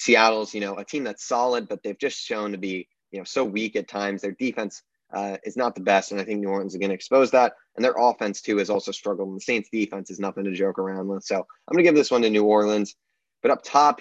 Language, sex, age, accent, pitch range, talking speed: English, male, 20-39, American, 100-125 Hz, 280 wpm